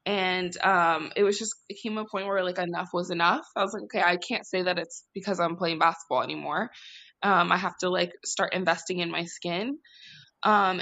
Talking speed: 215 wpm